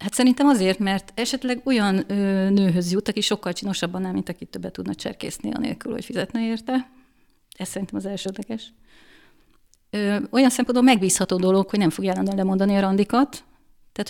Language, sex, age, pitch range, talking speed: Hungarian, female, 30-49, 190-240 Hz, 160 wpm